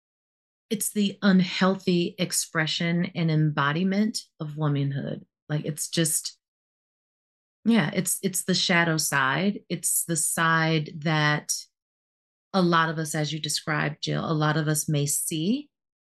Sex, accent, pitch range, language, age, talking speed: female, American, 150-180 Hz, English, 30-49, 130 wpm